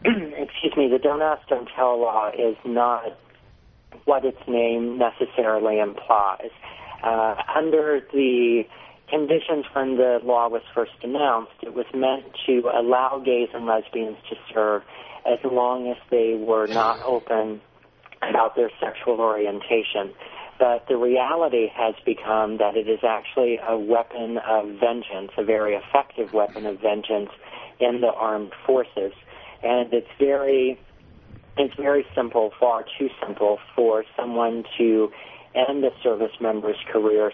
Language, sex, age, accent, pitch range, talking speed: English, male, 40-59, American, 110-125 Hz, 140 wpm